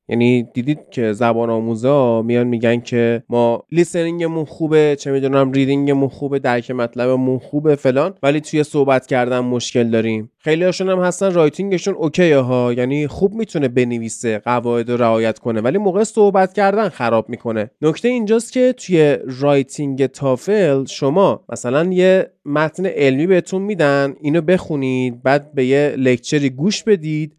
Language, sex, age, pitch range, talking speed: Persian, male, 20-39, 130-185 Hz, 145 wpm